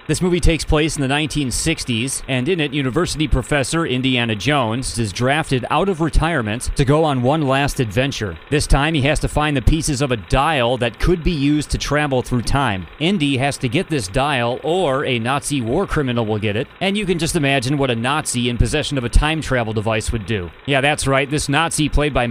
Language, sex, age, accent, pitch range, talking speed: English, male, 30-49, American, 120-150 Hz, 220 wpm